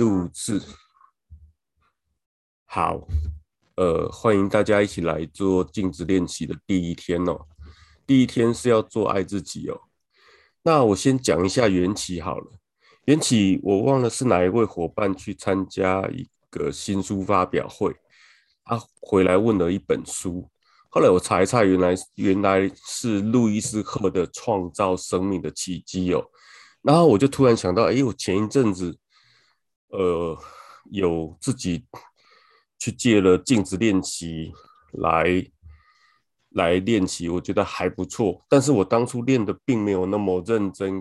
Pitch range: 90-115 Hz